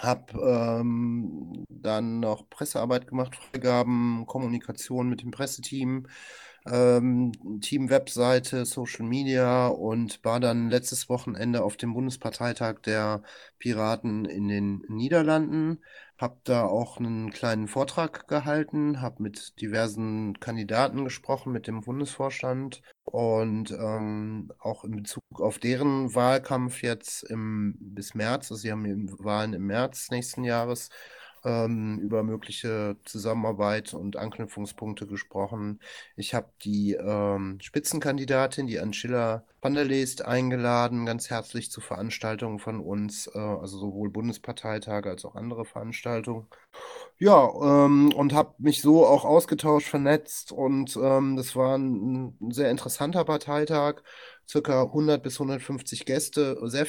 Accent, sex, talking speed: German, male, 120 wpm